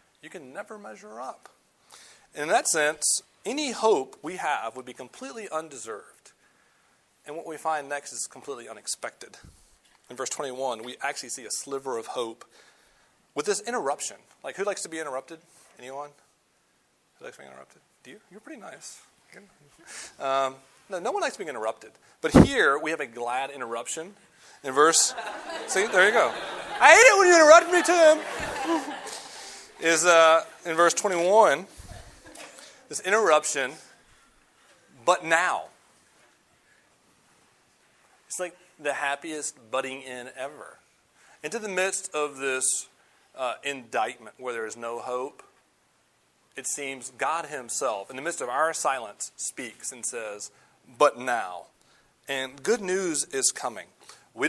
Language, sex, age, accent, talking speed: English, male, 30-49, American, 145 wpm